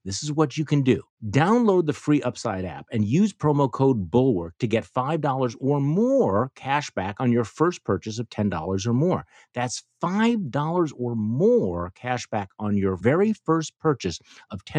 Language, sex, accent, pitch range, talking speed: English, male, American, 105-155 Hz, 175 wpm